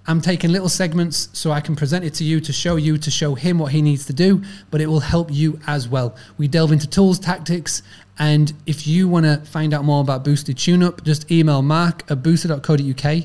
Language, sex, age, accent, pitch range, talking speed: English, male, 30-49, British, 140-170 Hz, 225 wpm